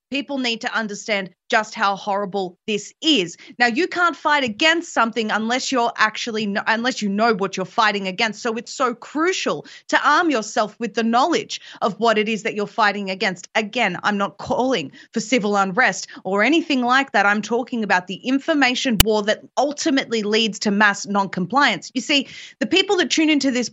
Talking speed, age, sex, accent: 185 wpm, 30-49, female, Australian